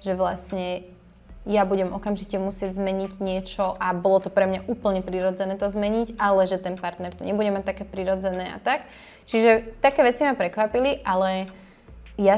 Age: 20-39